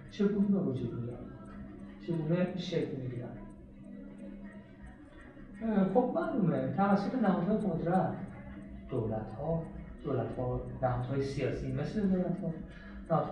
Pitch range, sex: 150-200 Hz, male